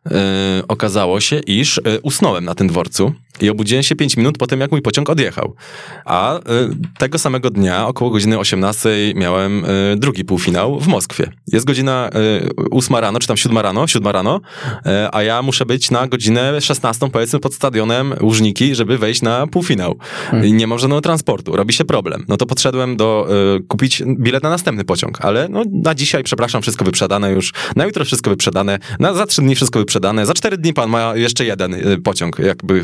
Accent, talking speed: native, 180 wpm